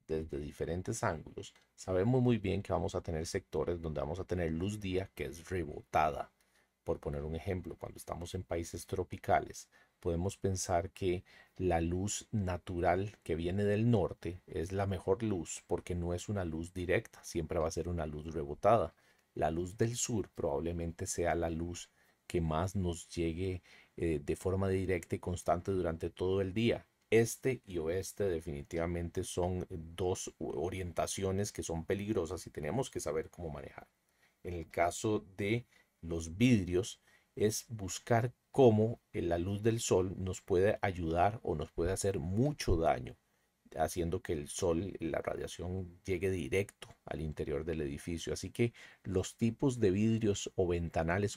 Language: Spanish